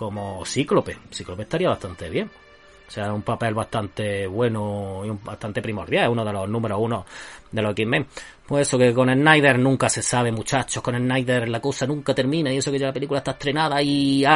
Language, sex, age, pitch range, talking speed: Spanish, male, 30-49, 110-145 Hz, 205 wpm